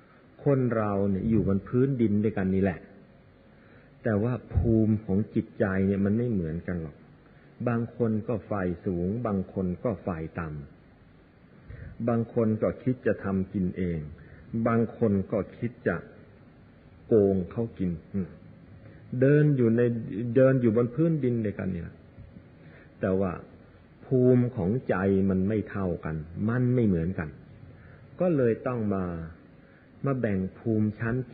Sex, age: male, 50-69